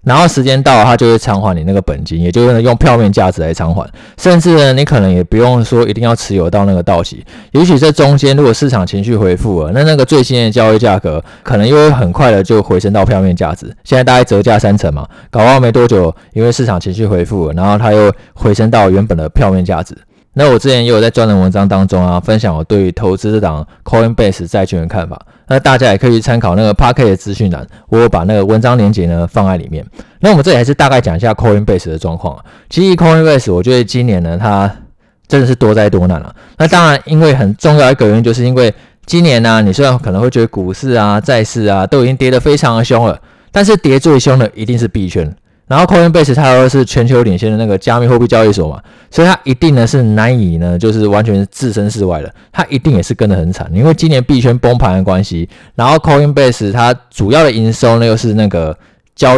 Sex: male